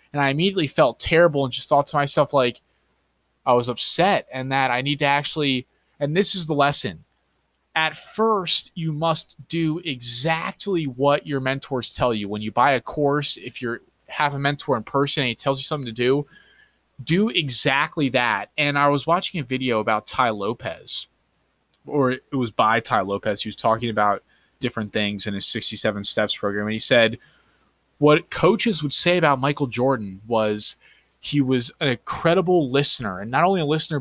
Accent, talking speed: American, 185 wpm